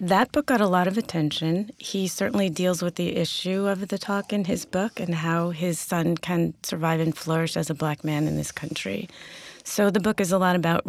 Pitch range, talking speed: 160-185 Hz, 225 wpm